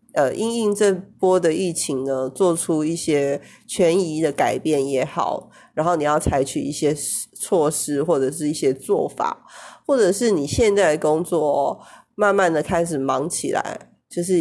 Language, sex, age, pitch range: Chinese, female, 30-49, 150-195 Hz